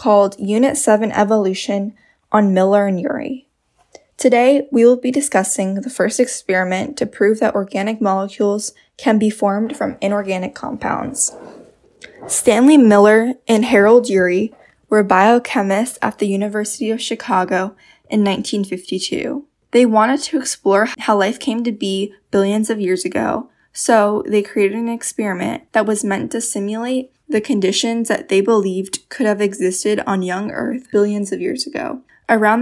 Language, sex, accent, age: English, female, American, 10-29